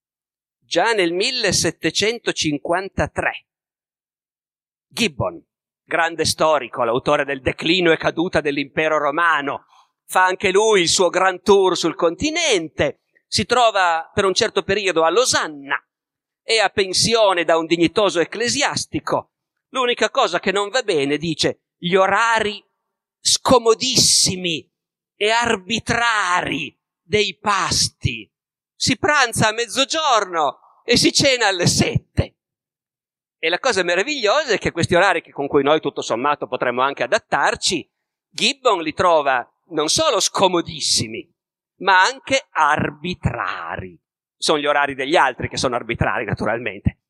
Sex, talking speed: male, 120 wpm